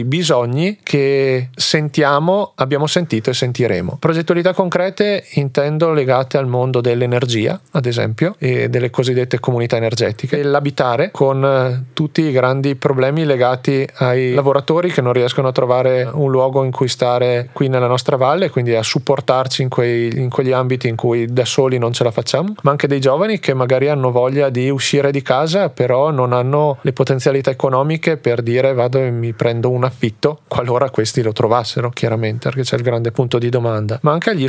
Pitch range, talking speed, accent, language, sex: 125-145 Hz, 175 wpm, native, Italian, male